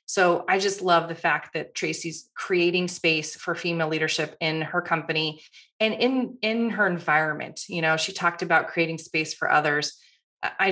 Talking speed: 175 wpm